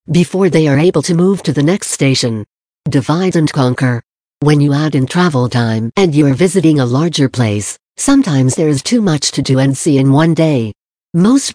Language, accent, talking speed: English, American, 195 wpm